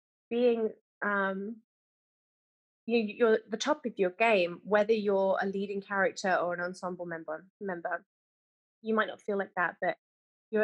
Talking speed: 160 wpm